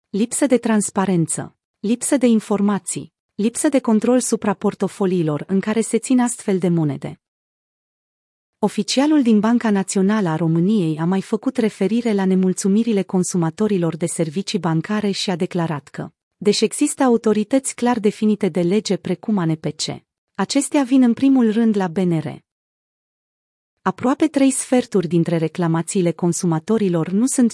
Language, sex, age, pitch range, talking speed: Romanian, female, 30-49, 175-225 Hz, 135 wpm